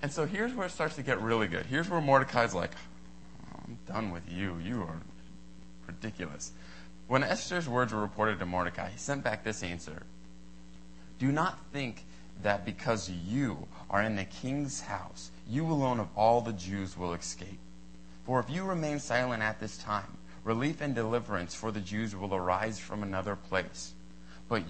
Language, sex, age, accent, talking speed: English, male, 30-49, American, 175 wpm